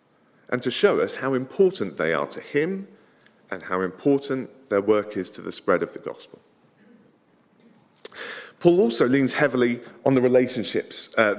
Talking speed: 160 wpm